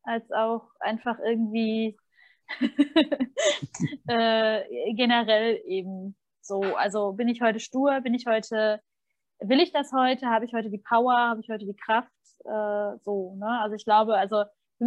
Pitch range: 220-275 Hz